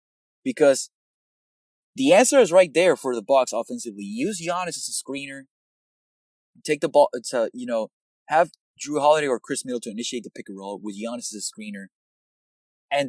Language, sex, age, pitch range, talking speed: English, male, 20-39, 105-150 Hz, 180 wpm